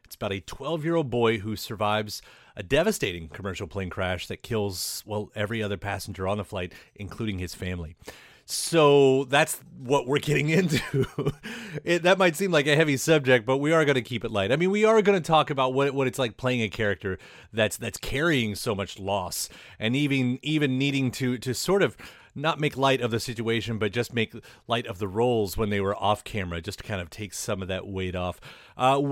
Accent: American